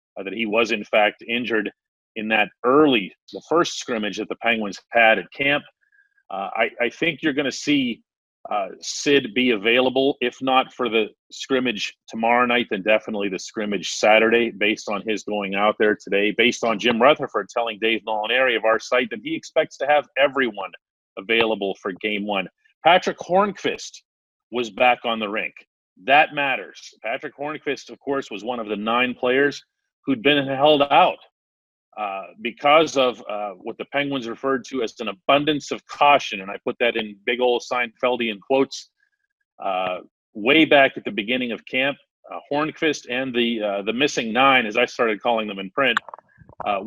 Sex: male